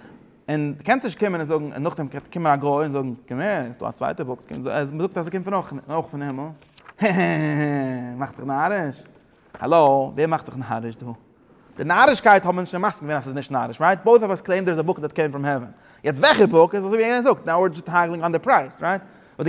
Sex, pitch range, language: male, 135-180 Hz, English